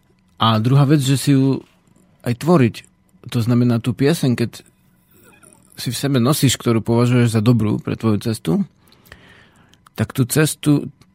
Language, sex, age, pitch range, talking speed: Slovak, male, 40-59, 110-135 Hz, 145 wpm